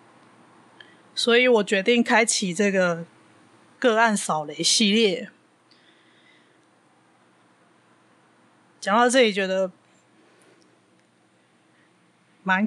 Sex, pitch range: female, 185-235 Hz